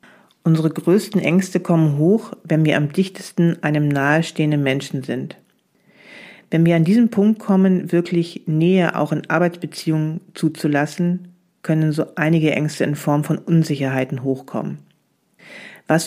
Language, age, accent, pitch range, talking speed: German, 40-59, German, 150-180 Hz, 130 wpm